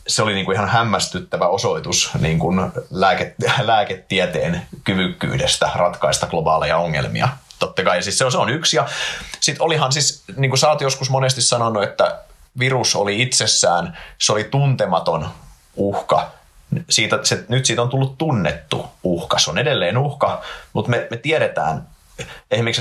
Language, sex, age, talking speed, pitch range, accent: Finnish, male, 30-49, 145 wpm, 100-125 Hz, native